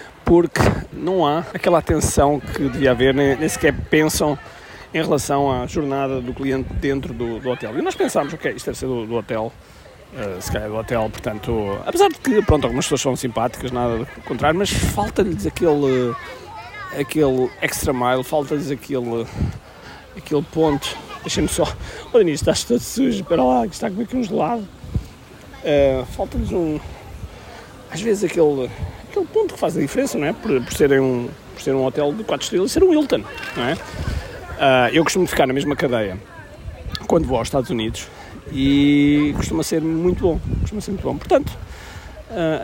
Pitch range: 120-160 Hz